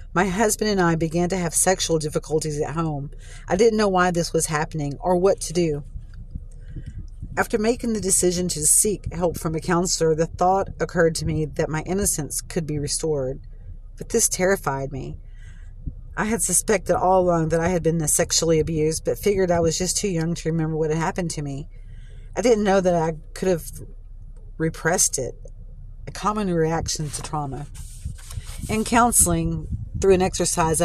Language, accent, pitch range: English, American, 140-180 Hz